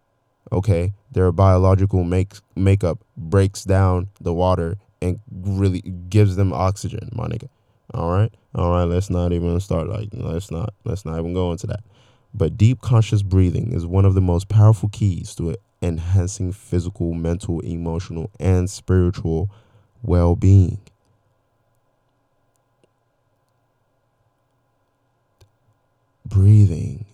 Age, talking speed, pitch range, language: 20-39, 115 wpm, 95-115 Hz, English